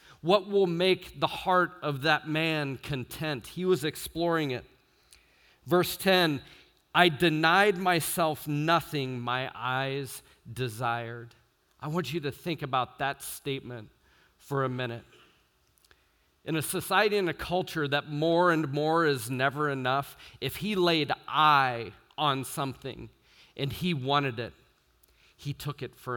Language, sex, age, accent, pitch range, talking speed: English, male, 40-59, American, 120-170 Hz, 140 wpm